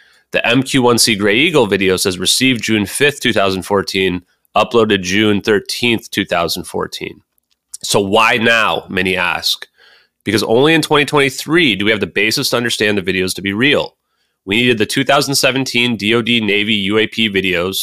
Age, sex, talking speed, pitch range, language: 30-49, male, 145 wpm, 100-120 Hz, English